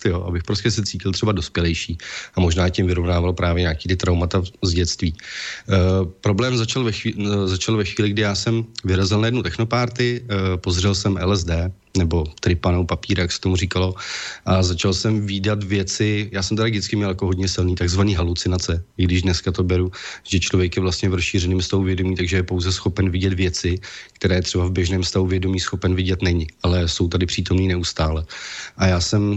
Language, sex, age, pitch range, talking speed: Slovak, male, 30-49, 90-100 Hz, 190 wpm